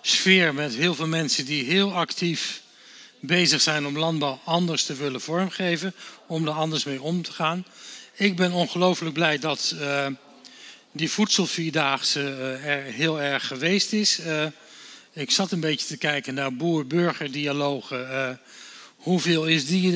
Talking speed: 155 wpm